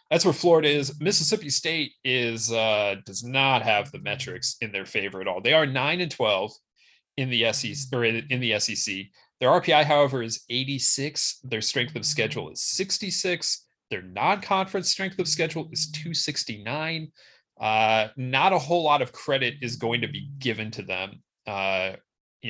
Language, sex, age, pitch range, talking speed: English, male, 30-49, 110-140 Hz, 170 wpm